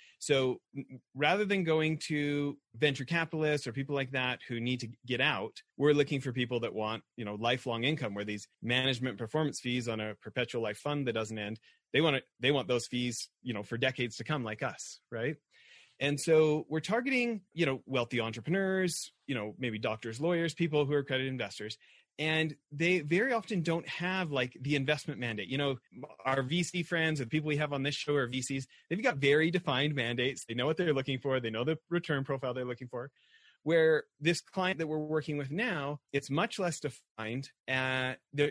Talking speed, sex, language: 200 wpm, male, English